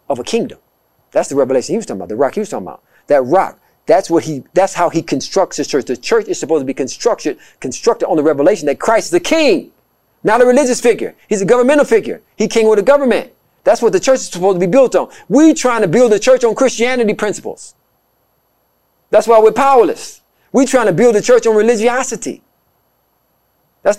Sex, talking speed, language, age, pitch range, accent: male, 220 wpm, English, 40-59, 160-250 Hz, American